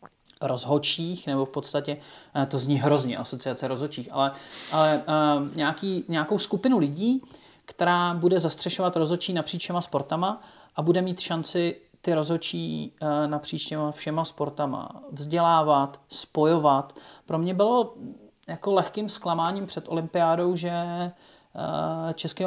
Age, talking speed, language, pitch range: 40-59, 115 wpm, Czech, 150-175 Hz